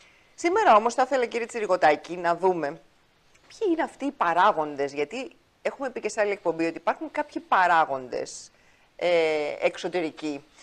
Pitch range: 160-230 Hz